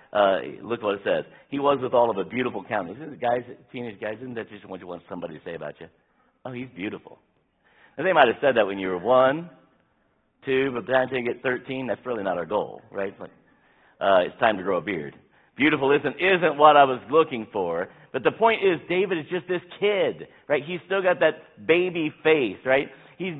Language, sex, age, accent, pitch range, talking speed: English, male, 50-69, American, 130-180 Hz, 225 wpm